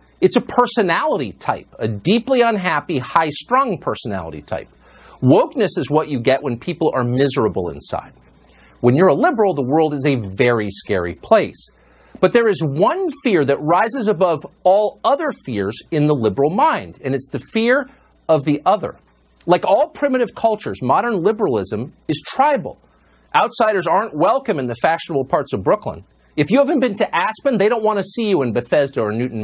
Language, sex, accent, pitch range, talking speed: English, male, American, 120-195 Hz, 175 wpm